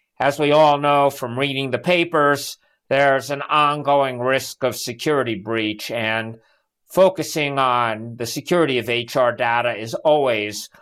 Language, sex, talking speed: English, male, 140 wpm